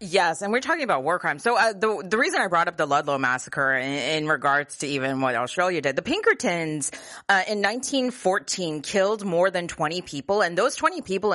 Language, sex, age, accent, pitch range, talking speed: English, female, 30-49, American, 155-220 Hz, 210 wpm